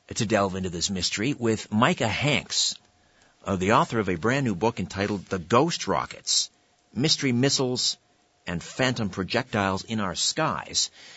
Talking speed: 145 wpm